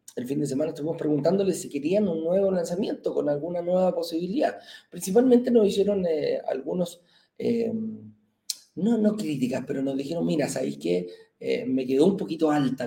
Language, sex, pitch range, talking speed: Spanish, male, 140-225 Hz, 170 wpm